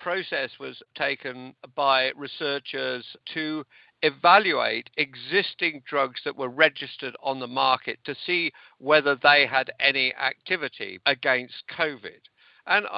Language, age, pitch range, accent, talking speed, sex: English, 50-69, 130-170 Hz, British, 115 wpm, male